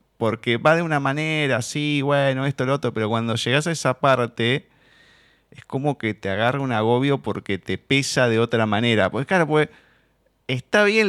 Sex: male